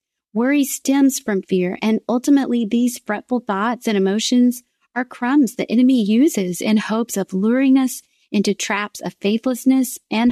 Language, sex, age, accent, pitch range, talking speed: English, female, 30-49, American, 205-245 Hz, 150 wpm